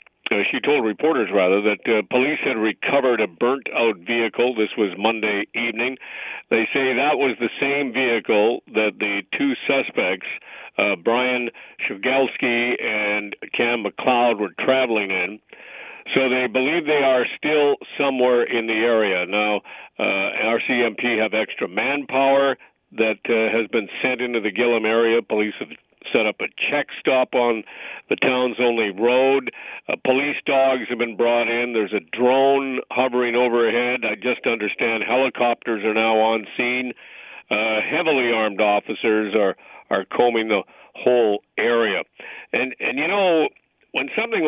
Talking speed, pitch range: 145 wpm, 110-130 Hz